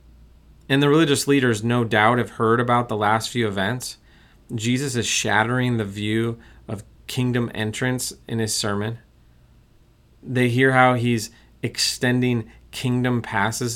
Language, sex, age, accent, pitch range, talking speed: English, male, 30-49, American, 105-130 Hz, 135 wpm